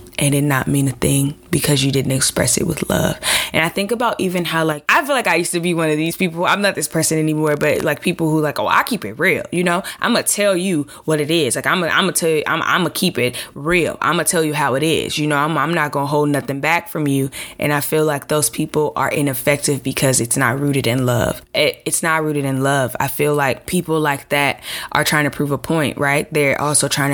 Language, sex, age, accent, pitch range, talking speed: English, female, 20-39, American, 135-155 Hz, 265 wpm